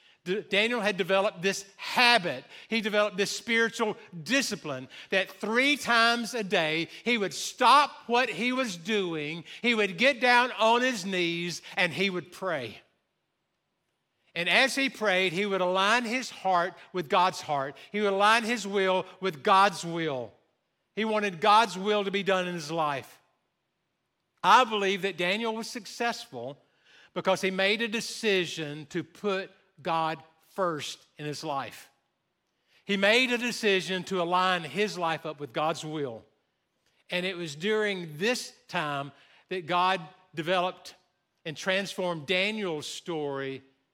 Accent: American